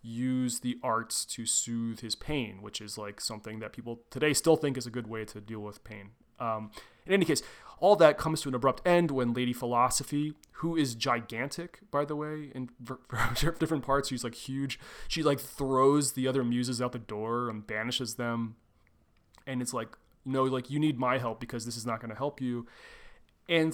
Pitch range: 115-135 Hz